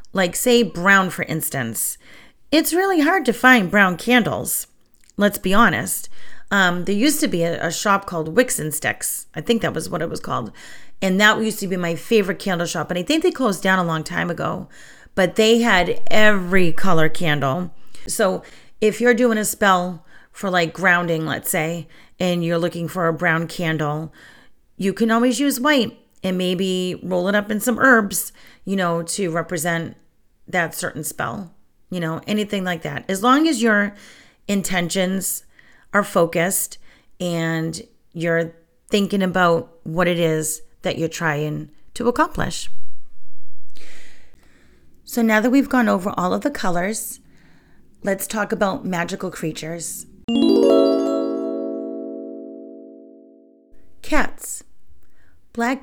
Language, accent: English, American